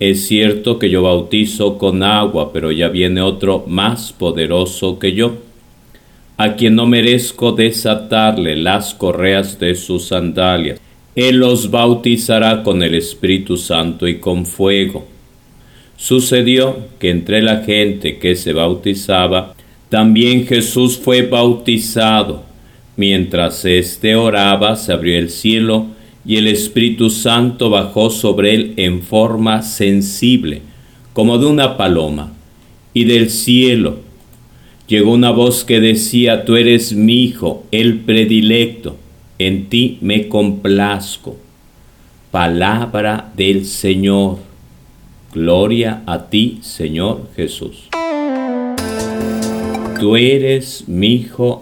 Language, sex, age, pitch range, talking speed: Spanish, male, 50-69, 95-120 Hz, 115 wpm